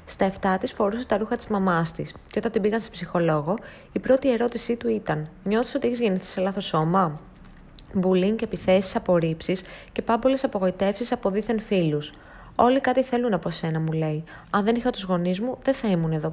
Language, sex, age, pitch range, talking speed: Greek, female, 20-39, 175-225 Hz, 195 wpm